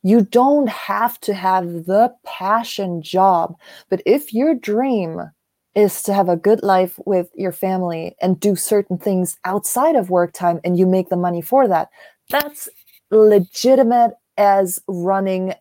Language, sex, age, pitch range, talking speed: English, female, 20-39, 175-215 Hz, 155 wpm